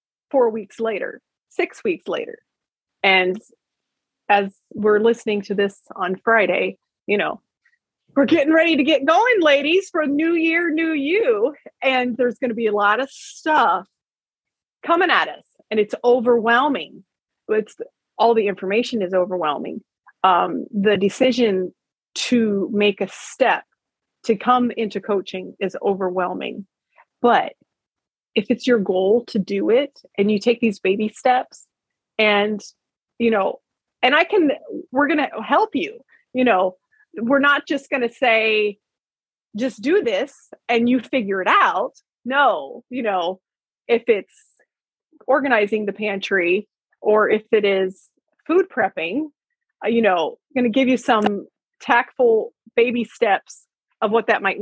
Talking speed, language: 145 wpm, English